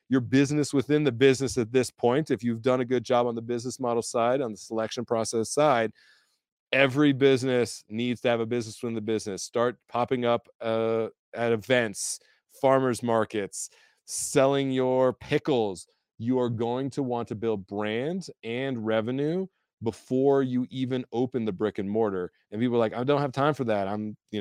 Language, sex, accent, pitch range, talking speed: English, male, American, 110-135 Hz, 185 wpm